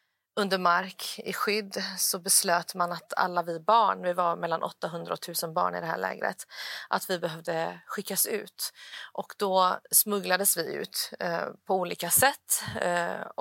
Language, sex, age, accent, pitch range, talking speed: Swedish, female, 30-49, native, 175-195 Hz, 160 wpm